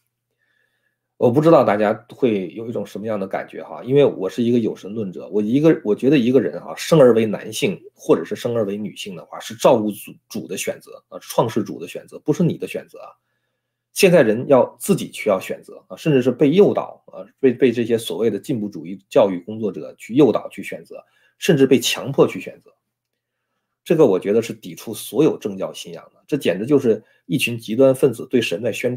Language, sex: Chinese, male